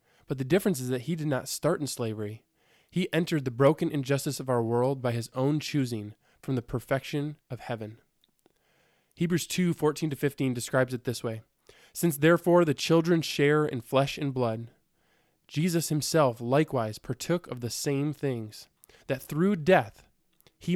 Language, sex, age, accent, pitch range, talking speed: English, male, 20-39, American, 125-155 Hz, 170 wpm